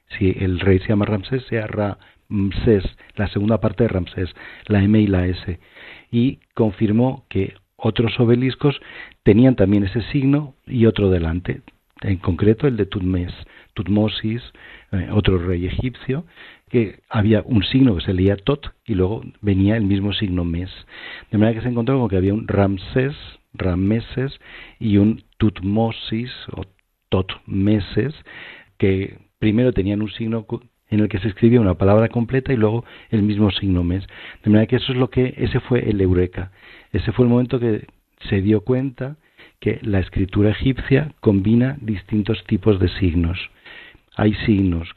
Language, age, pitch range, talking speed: Spanish, 50-69, 95-120 Hz, 160 wpm